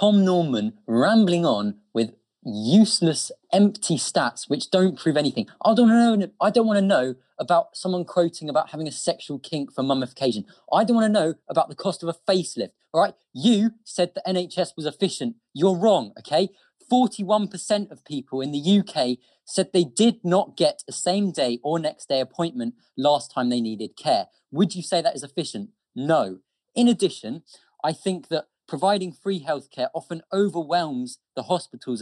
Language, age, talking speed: English, 20-39, 175 wpm